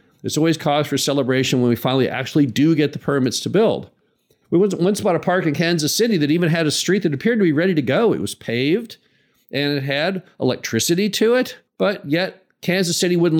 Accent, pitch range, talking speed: American, 125-165 Hz, 220 wpm